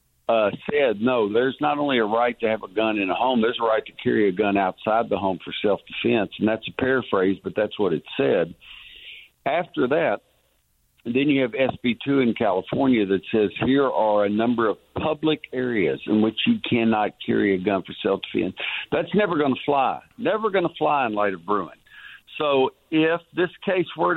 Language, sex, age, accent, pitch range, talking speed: English, male, 60-79, American, 110-145 Hz, 200 wpm